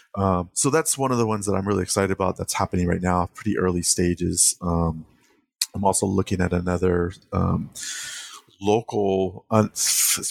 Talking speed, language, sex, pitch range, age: 170 wpm, English, male, 85-100 Hz, 30-49